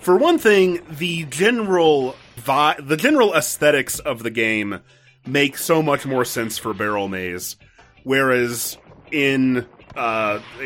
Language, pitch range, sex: English, 115-150 Hz, male